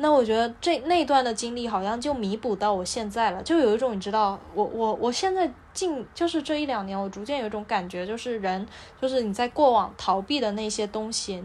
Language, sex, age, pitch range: Chinese, female, 10-29, 205-270 Hz